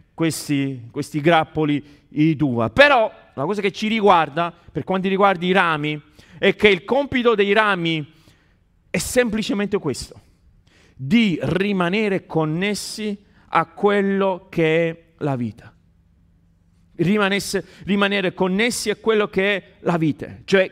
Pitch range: 160-210 Hz